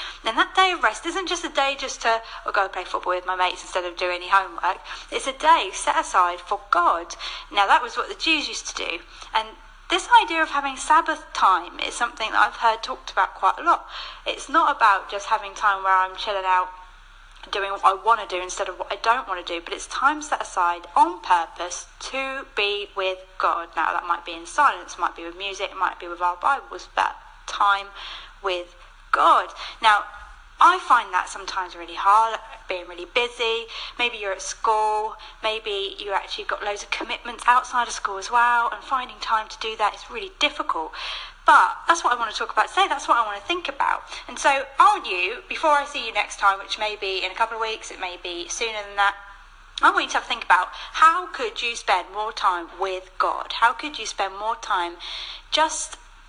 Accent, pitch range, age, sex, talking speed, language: British, 190-285 Hz, 30-49, female, 220 wpm, English